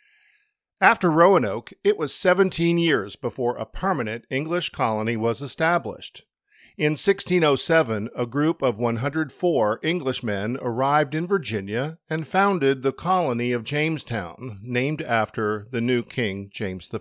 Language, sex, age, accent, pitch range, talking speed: English, male, 50-69, American, 115-160 Hz, 125 wpm